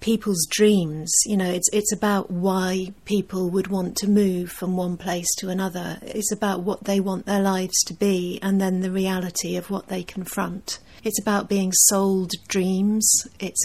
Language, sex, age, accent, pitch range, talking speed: English, female, 40-59, British, 185-200 Hz, 180 wpm